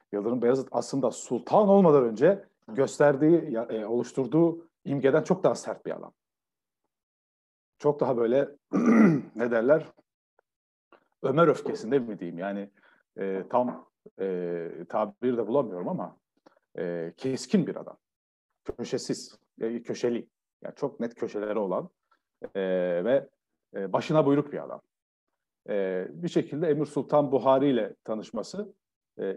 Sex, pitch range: male, 105-145 Hz